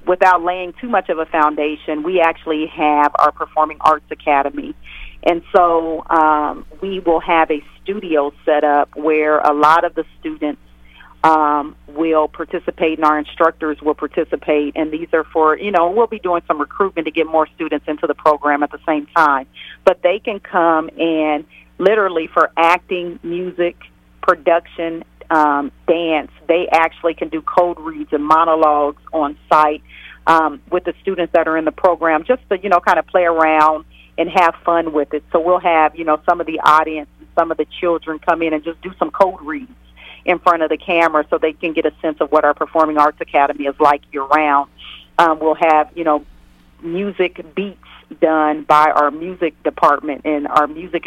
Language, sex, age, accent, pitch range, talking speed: English, female, 40-59, American, 150-175 Hz, 190 wpm